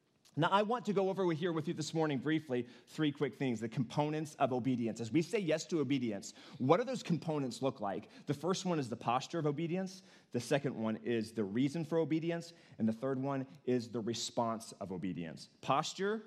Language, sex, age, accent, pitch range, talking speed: English, male, 30-49, American, 135-190 Hz, 210 wpm